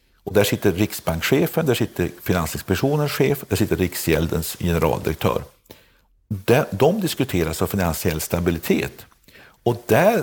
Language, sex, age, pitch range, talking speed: Swedish, male, 50-69, 85-130 Hz, 110 wpm